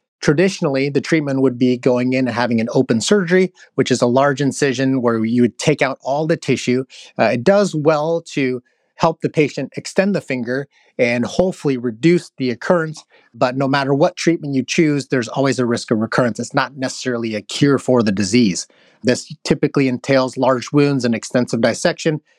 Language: English